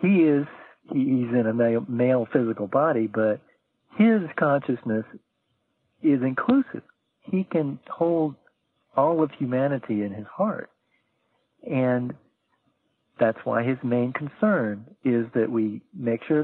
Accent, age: American, 50-69